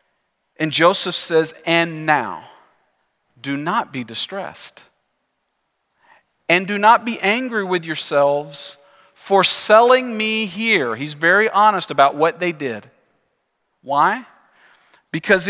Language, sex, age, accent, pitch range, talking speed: English, male, 40-59, American, 140-215 Hz, 110 wpm